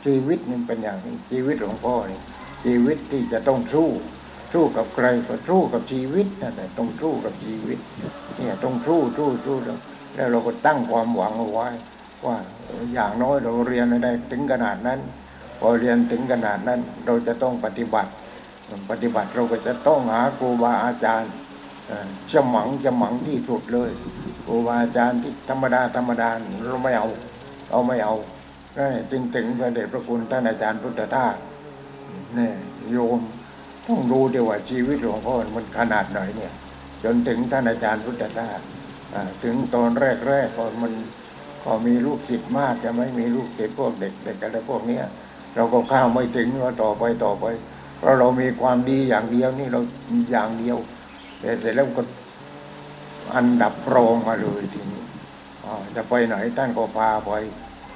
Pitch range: 110-125 Hz